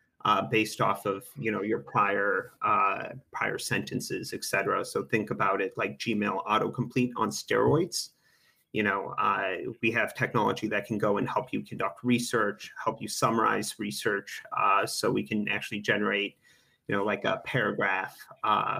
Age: 30-49